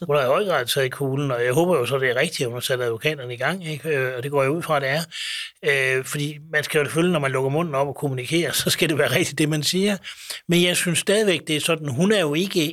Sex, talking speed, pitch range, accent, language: male, 295 wpm, 135-170 Hz, native, Danish